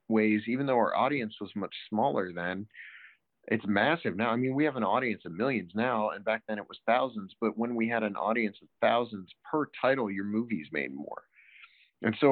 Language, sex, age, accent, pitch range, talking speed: English, male, 30-49, American, 95-115 Hz, 210 wpm